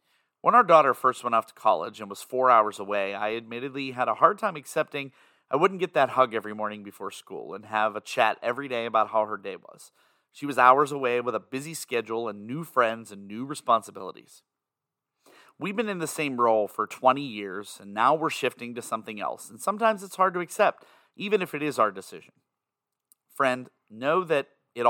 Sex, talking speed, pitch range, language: male, 205 wpm, 110-150 Hz, English